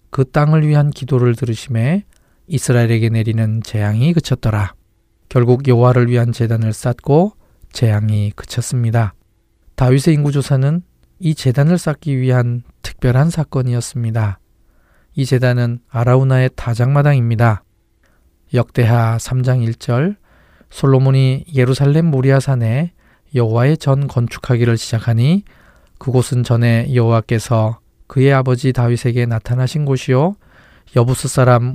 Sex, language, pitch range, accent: male, Korean, 115-135 Hz, native